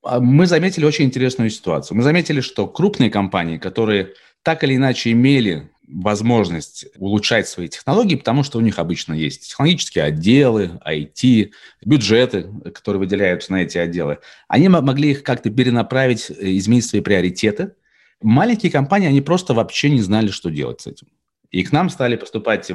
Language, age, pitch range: Russian, 30-49, 95-140 Hz